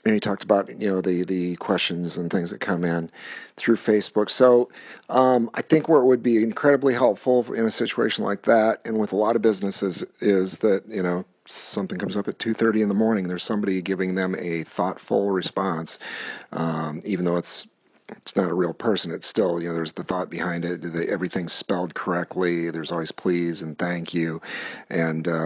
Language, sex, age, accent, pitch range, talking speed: English, male, 40-59, American, 90-110 Hz, 200 wpm